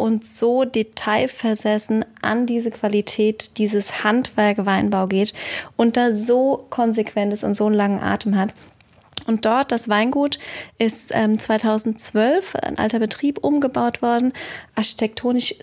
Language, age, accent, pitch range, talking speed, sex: German, 20-39, German, 215-245 Hz, 125 wpm, female